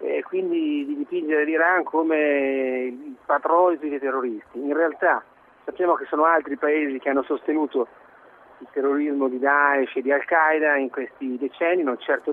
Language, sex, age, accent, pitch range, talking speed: Italian, male, 40-59, native, 140-165 Hz, 155 wpm